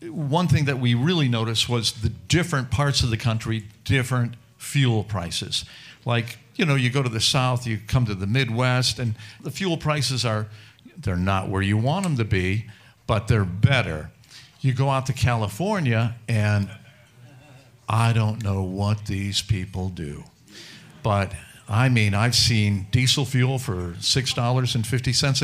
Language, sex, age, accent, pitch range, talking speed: English, male, 50-69, American, 110-135 Hz, 160 wpm